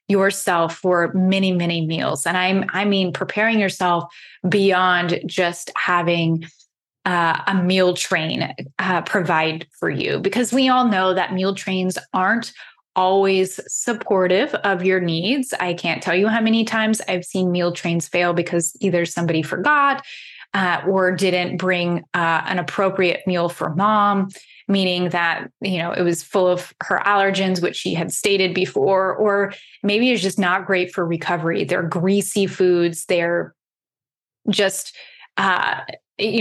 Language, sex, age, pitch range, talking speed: English, female, 20-39, 175-205 Hz, 150 wpm